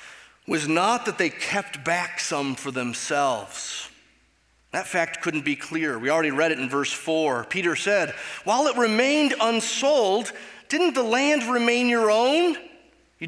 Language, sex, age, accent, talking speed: English, male, 30-49, American, 155 wpm